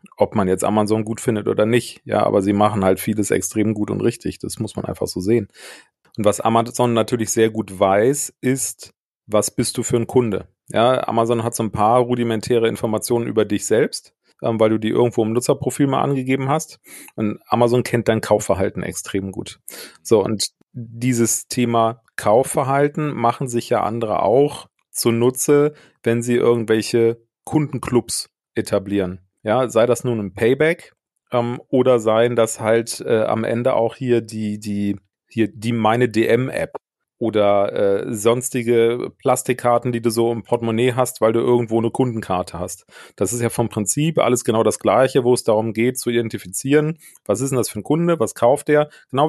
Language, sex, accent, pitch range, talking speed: German, male, German, 110-125 Hz, 180 wpm